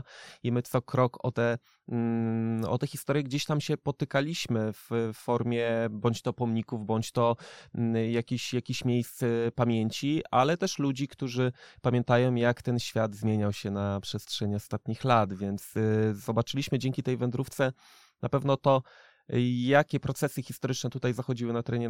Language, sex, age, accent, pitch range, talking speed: Polish, male, 20-39, native, 115-135 Hz, 145 wpm